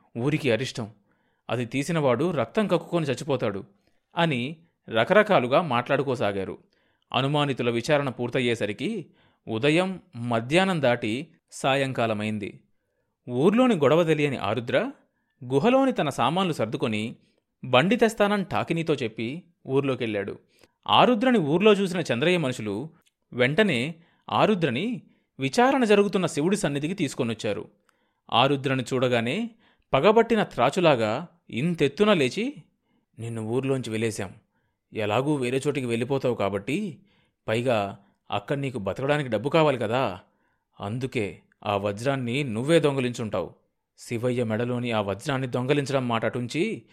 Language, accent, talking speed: Telugu, native, 95 wpm